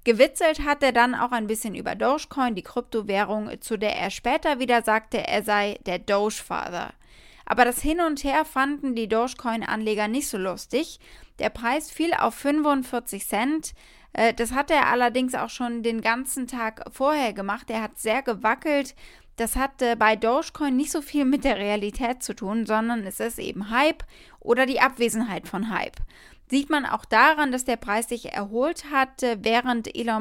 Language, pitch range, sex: German, 215-270 Hz, female